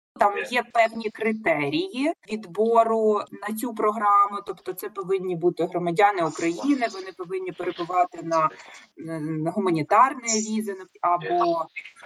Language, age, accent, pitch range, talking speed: Ukrainian, 20-39, native, 185-220 Hz, 105 wpm